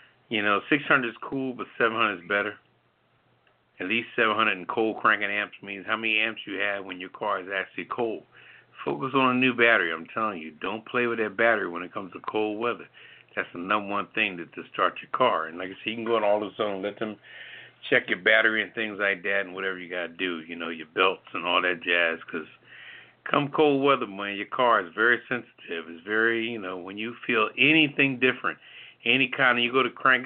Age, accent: 60-79, American